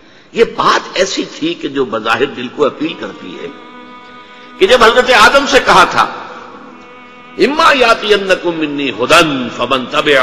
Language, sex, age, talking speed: Urdu, male, 60-79, 145 wpm